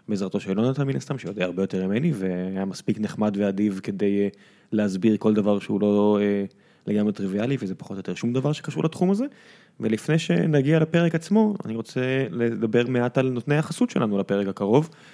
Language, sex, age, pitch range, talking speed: Hebrew, male, 20-39, 105-145 Hz, 180 wpm